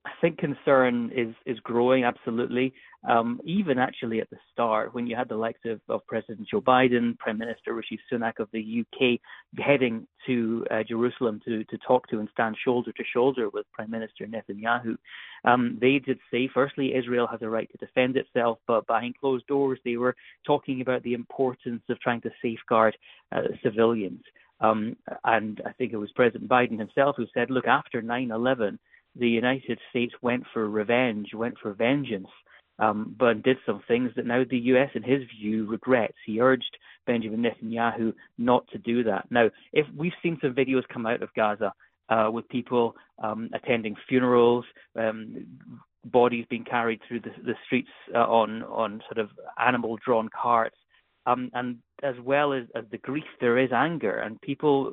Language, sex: English, male